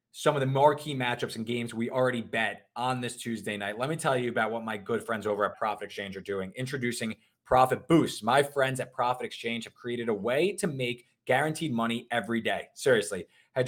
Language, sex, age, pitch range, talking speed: English, male, 20-39, 115-135 Hz, 220 wpm